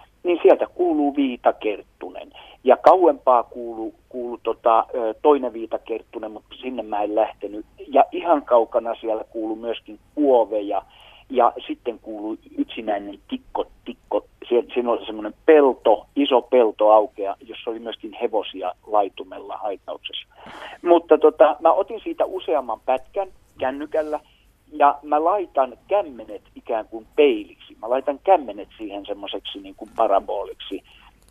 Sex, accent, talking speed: male, native, 125 wpm